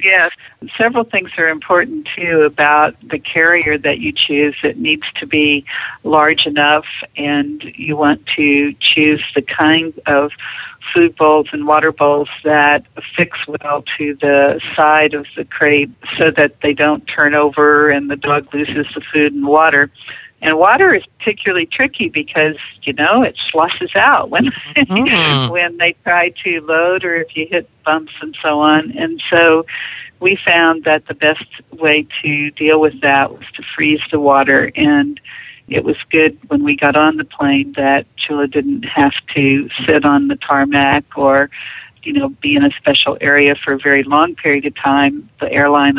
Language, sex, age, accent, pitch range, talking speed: English, female, 50-69, American, 140-170 Hz, 170 wpm